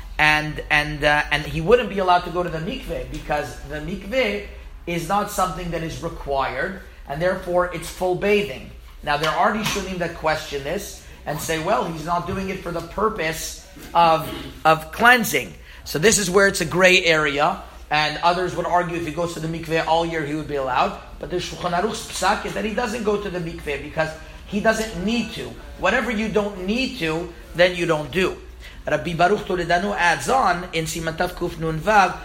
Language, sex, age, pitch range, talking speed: English, male, 40-59, 160-205 Hz, 200 wpm